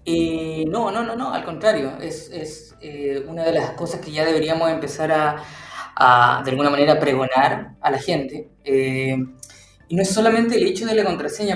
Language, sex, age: Spanish, female, 20-39